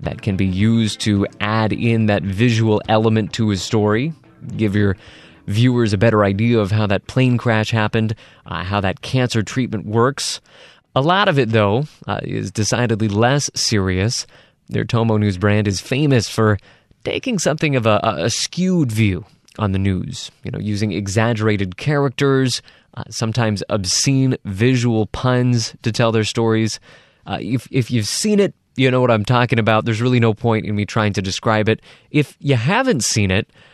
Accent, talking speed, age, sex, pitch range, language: American, 175 wpm, 20-39, male, 105-130 Hz, English